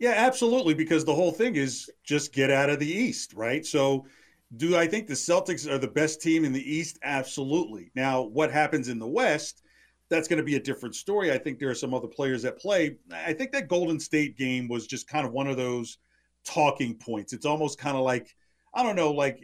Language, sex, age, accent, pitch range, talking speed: English, male, 40-59, American, 130-165 Hz, 230 wpm